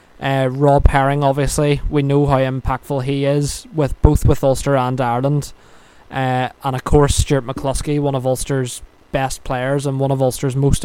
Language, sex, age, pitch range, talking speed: English, male, 20-39, 135-150 Hz, 175 wpm